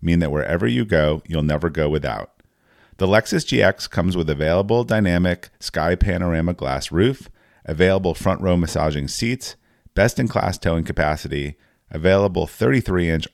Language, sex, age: English, male, 30-49